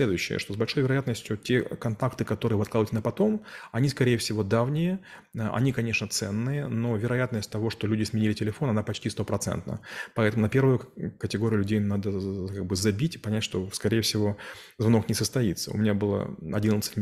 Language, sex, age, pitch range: Russian, male, 30-49, 105-120 Hz